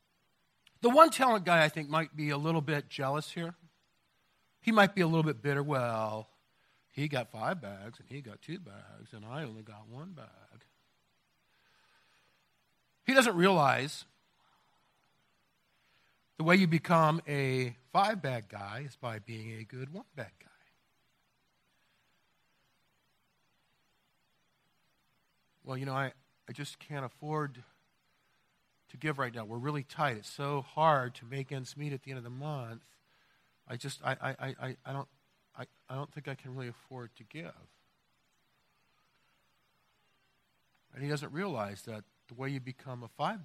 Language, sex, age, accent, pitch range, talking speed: English, male, 50-69, American, 120-165 Hz, 150 wpm